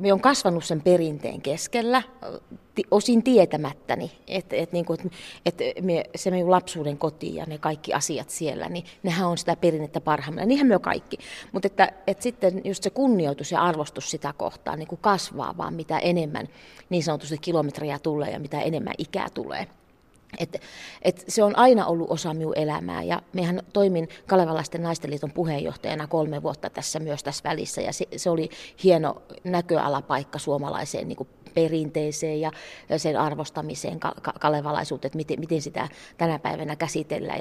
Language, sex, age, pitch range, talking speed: Finnish, female, 30-49, 150-185 Hz, 155 wpm